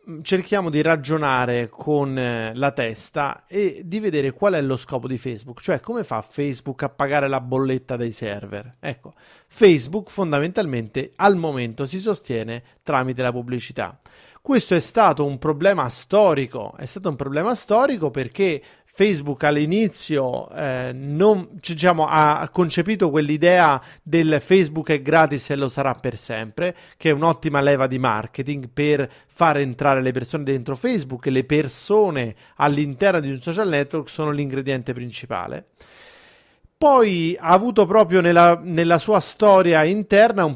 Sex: male